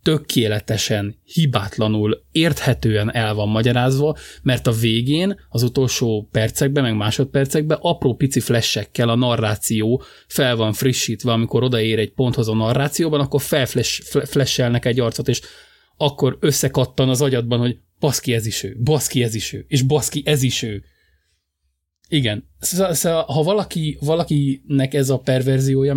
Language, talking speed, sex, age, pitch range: Hungarian, 140 wpm, male, 20-39, 110-140 Hz